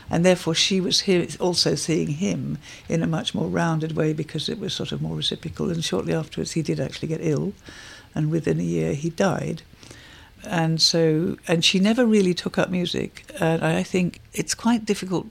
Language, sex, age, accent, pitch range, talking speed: English, female, 60-79, British, 155-185 Hz, 195 wpm